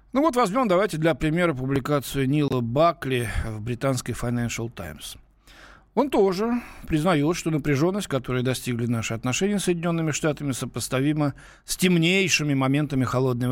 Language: Russian